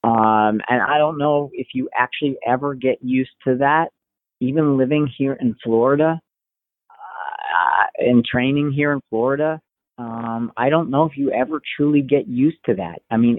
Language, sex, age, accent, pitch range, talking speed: English, male, 40-59, American, 120-150 Hz, 170 wpm